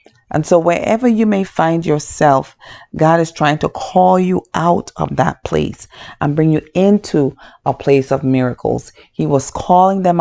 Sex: female